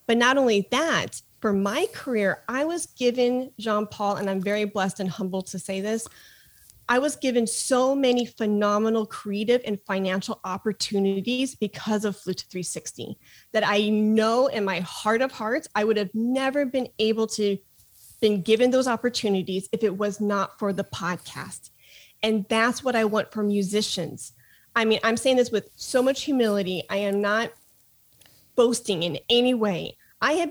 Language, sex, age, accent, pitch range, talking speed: English, female, 30-49, American, 195-245 Hz, 165 wpm